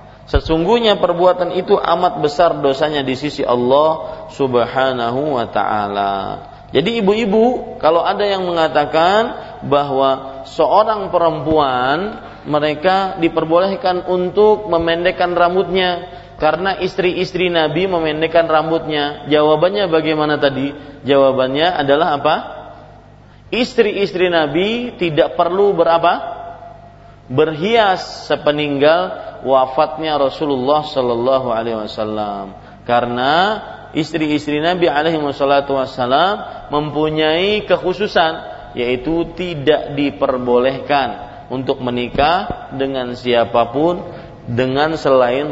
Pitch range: 130-170 Hz